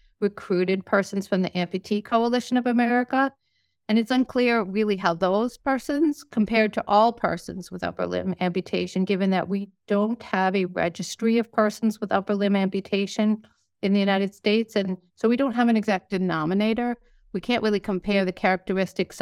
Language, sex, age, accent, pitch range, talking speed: English, female, 50-69, American, 185-230 Hz, 170 wpm